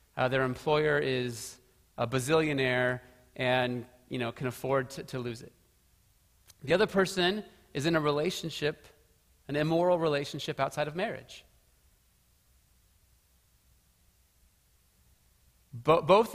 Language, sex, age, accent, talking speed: English, male, 30-49, American, 105 wpm